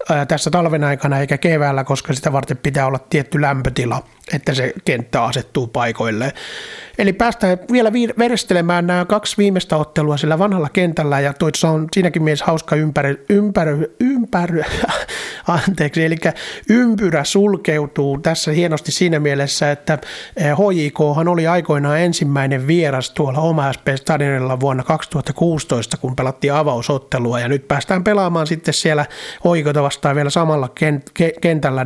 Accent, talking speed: native, 130 wpm